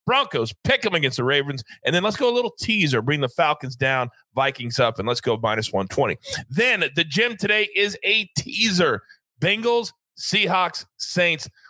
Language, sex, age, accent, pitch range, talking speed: English, male, 30-49, American, 125-200 Hz, 175 wpm